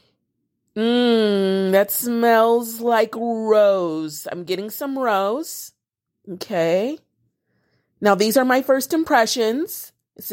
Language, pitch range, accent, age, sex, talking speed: English, 190-245 Hz, American, 30-49, female, 100 wpm